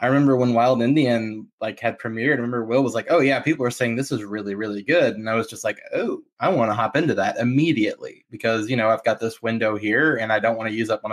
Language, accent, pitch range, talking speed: English, American, 110-135 Hz, 280 wpm